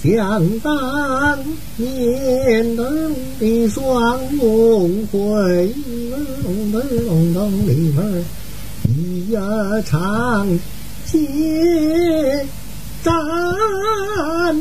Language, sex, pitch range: Chinese, male, 205-285 Hz